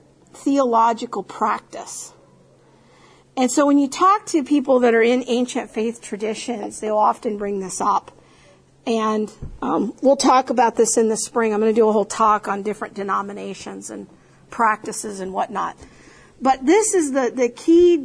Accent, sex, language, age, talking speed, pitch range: American, female, English, 50-69, 165 wpm, 220-270 Hz